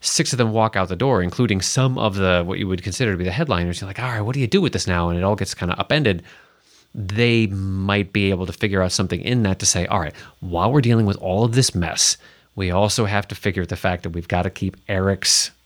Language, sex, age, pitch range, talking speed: English, male, 30-49, 90-115 Hz, 280 wpm